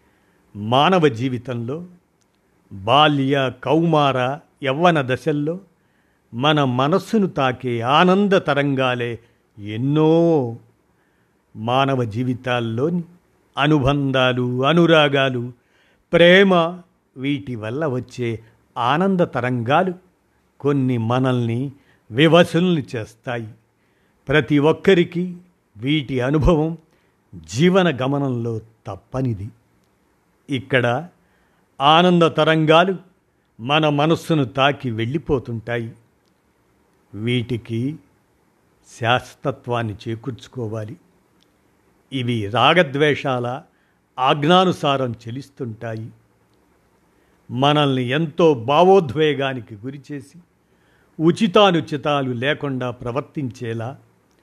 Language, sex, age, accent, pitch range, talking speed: Telugu, male, 50-69, native, 120-155 Hz, 60 wpm